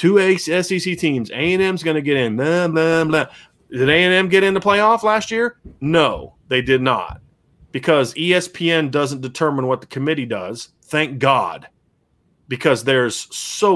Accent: American